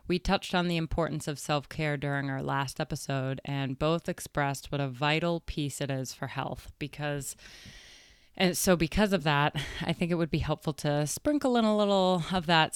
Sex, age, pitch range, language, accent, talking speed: female, 20-39, 140-165 Hz, English, American, 195 wpm